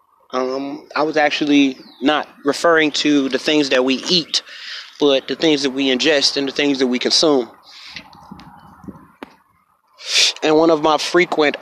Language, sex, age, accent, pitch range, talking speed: English, male, 20-39, American, 135-160 Hz, 150 wpm